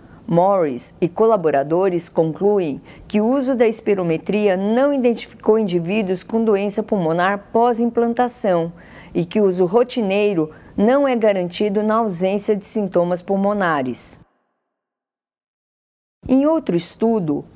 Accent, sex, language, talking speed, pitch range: Brazilian, female, Portuguese, 110 wpm, 175-235 Hz